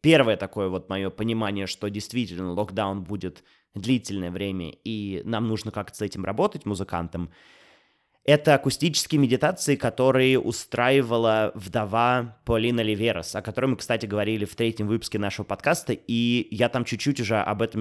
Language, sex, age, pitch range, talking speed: Russian, male, 20-39, 105-130 Hz, 150 wpm